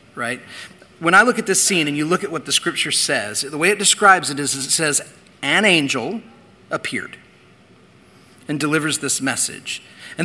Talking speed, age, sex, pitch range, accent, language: 180 wpm, 40-59, male, 150-205 Hz, American, English